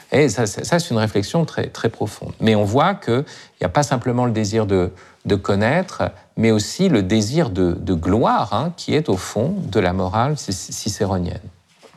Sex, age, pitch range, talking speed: male, 50-69, 105-150 Hz, 190 wpm